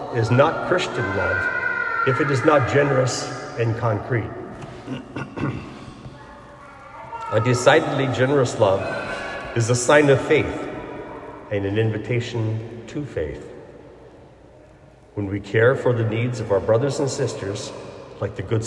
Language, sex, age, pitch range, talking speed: English, male, 60-79, 110-135 Hz, 125 wpm